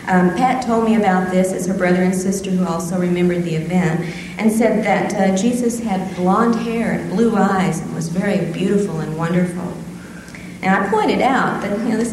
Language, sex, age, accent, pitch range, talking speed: English, female, 50-69, American, 180-225 Hz, 205 wpm